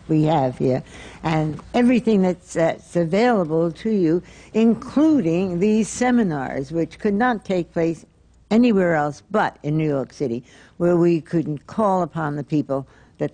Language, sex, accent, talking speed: English, female, American, 150 wpm